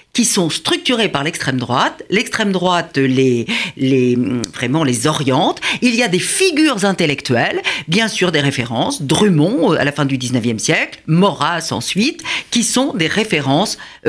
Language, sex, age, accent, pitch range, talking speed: French, female, 50-69, French, 140-205 Hz, 155 wpm